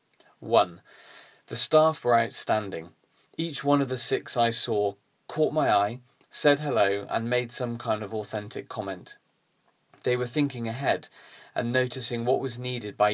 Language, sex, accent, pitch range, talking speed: English, male, British, 105-130 Hz, 155 wpm